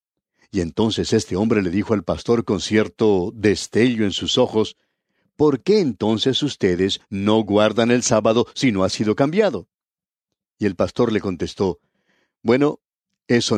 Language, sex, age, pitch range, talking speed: Spanish, male, 60-79, 100-135 Hz, 150 wpm